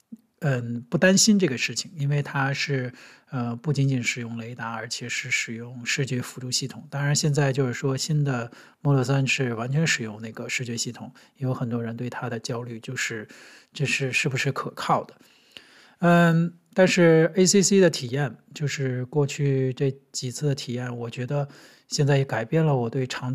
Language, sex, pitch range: Chinese, male, 125-145 Hz